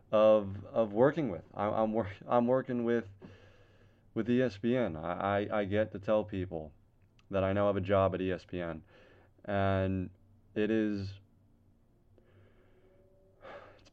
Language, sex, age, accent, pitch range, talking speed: English, male, 30-49, American, 95-110 Hz, 140 wpm